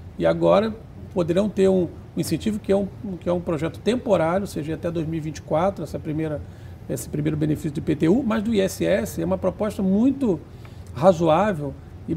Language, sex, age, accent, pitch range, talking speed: Portuguese, male, 50-69, Brazilian, 155-195 Hz, 150 wpm